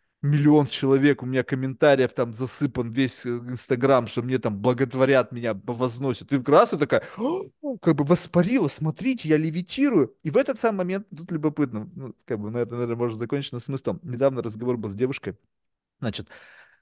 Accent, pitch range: native, 115-170 Hz